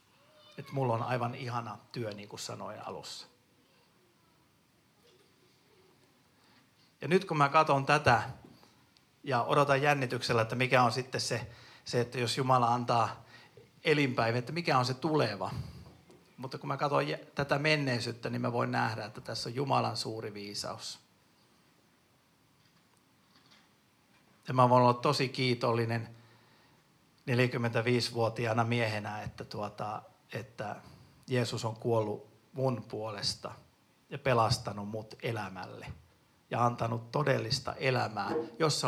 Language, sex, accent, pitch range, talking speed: Finnish, male, native, 115-140 Hz, 120 wpm